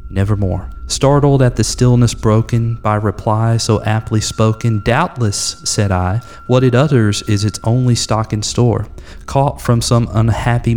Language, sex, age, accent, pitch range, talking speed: English, male, 30-49, American, 100-115 Hz, 150 wpm